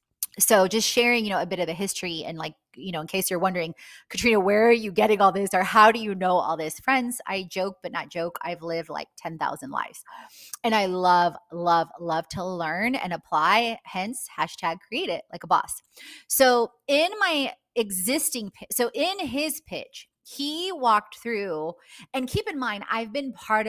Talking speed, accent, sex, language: 195 wpm, American, female, English